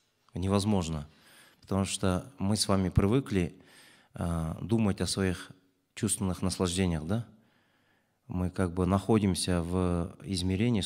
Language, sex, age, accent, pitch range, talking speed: Russian, male, 30-49, native, 85-105 Hz, 105 wpm